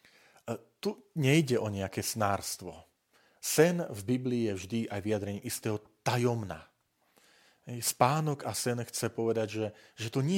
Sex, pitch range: male, 100-125 Hz